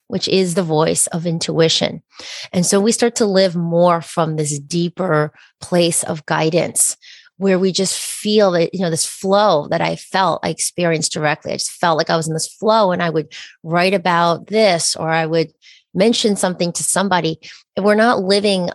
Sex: female